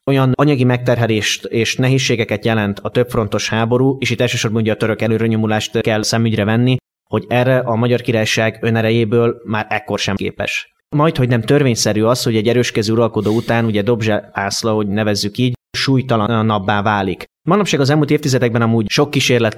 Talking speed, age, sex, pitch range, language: 165 wpm, 30-49, male, 110-125 Hz, Hungarian